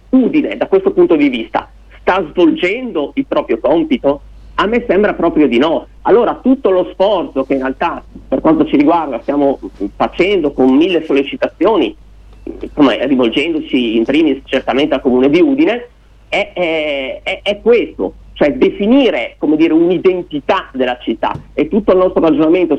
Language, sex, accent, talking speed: Italian, male, native, 145 wpm